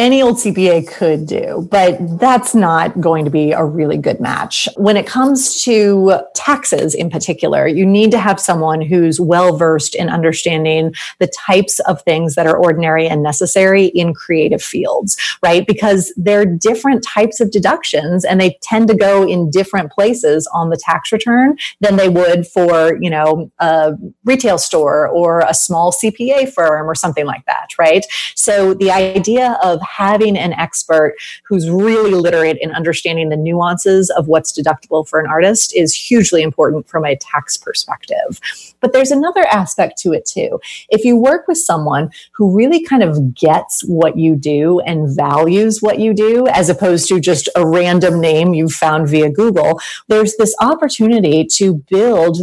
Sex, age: female, 30-49